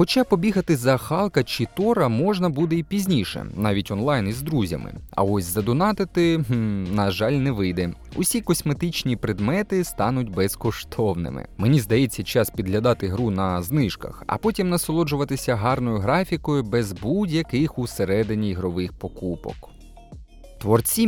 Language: Ukrainian